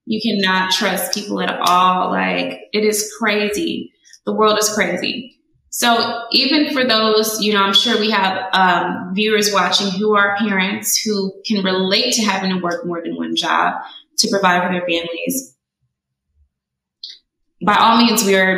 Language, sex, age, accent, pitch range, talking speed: English, female, 20-39, American, 185-230 Hz, 165 wpm